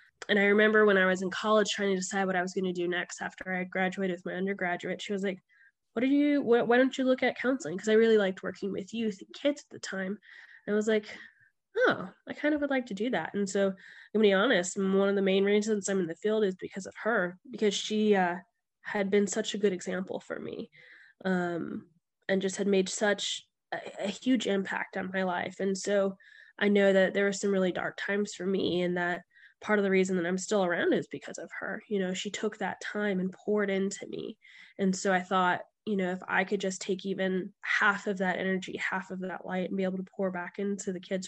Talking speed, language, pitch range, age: 250 wpm, English, 185-210 Hz, 10-29